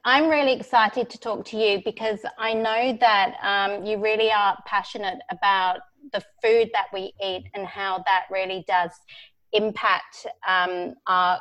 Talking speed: 160 wpm